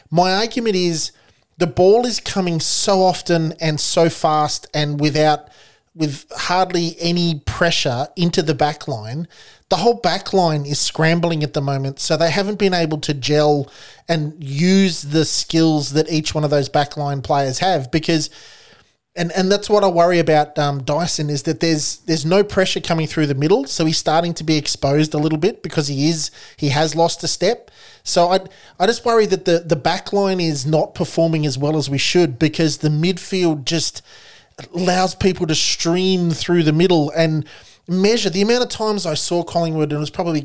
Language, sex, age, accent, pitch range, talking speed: English, male, 30-49, Australian, 150-185 Hz, 190 wpm